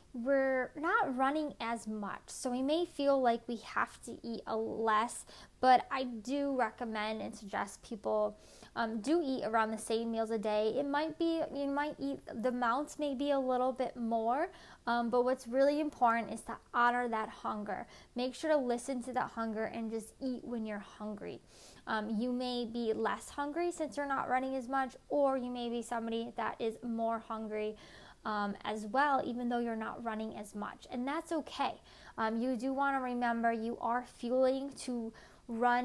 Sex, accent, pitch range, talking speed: female, American, 220-265 Hz, 185 wpm